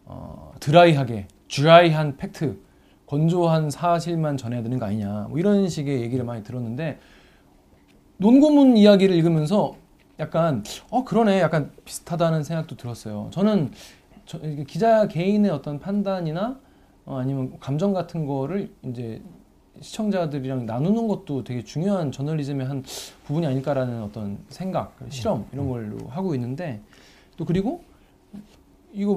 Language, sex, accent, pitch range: Korean, male, native, 130-185 Hz